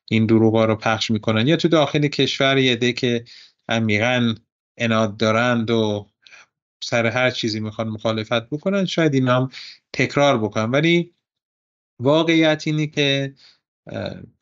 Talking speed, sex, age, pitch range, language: 120 wpm, male, 30-49, 105-130 Hz, Persian